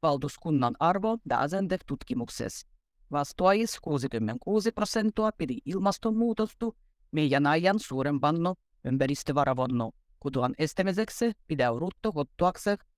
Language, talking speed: Finnish, 85 wpm